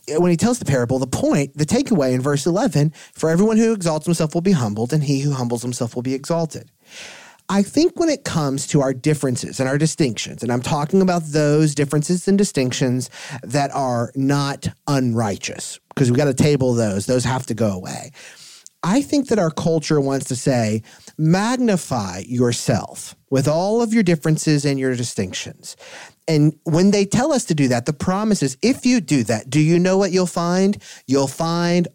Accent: American